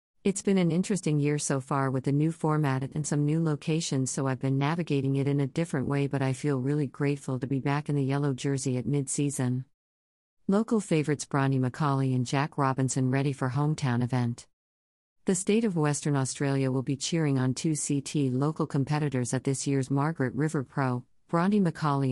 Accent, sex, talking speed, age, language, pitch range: American, female, 190 wpm, 50-69, English, 130-155 Hz